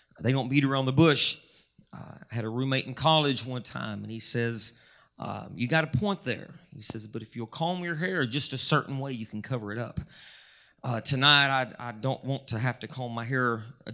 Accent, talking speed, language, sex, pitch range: American, 230 wpm, English, male, 115-140 Hz